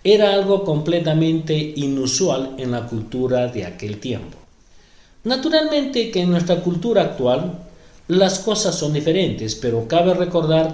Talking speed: 130 wpm